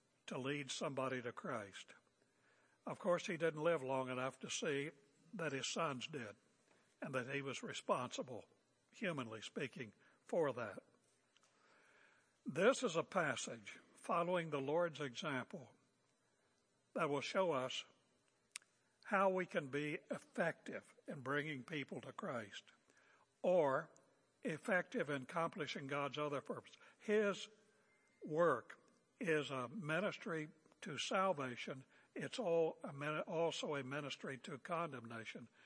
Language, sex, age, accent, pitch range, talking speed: English, male, 60-79, American, 140-185 Hz, 115 wpm